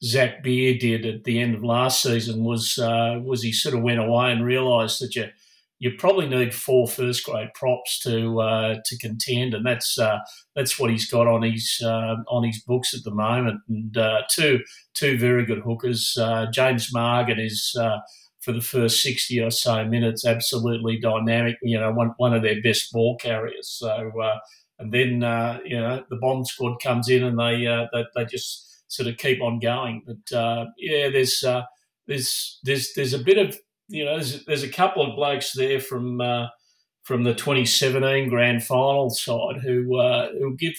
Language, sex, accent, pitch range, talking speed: English, male, Australian, 115-130 Hz, 195 wpm